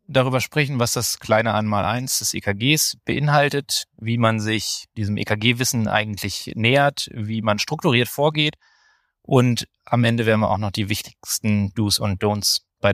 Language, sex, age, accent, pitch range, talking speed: German, male, 20-39, German, 105-125 Hz, 160 wpm